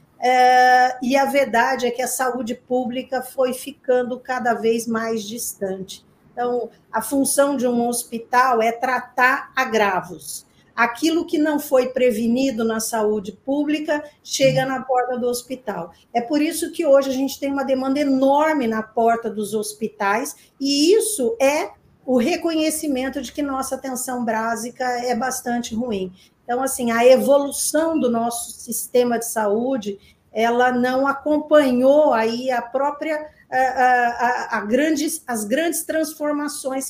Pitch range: 230-270 Hz